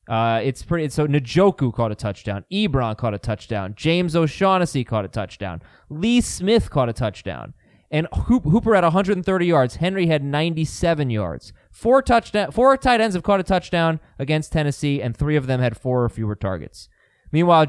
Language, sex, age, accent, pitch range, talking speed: English, male, 20-39, American, 115-155 Hz, 180 wpm